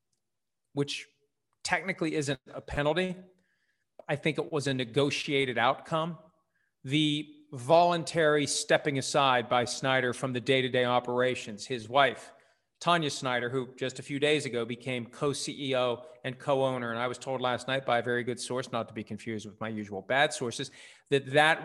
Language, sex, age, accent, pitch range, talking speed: English, male, 40-59, American, 125-155 Hz, 160 wpm